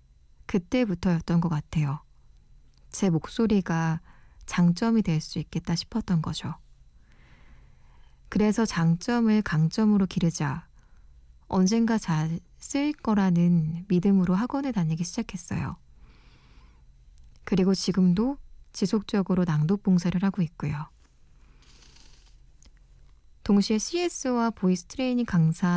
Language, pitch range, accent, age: Korean, 155-210 Hz, native, 20-39